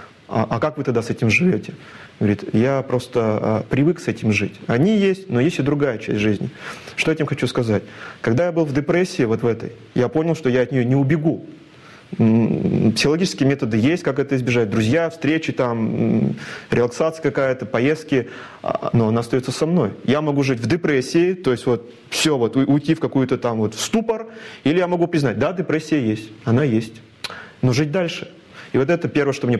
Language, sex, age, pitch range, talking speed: Russian, male, 30-49, 115-155 Hz, 195 wpm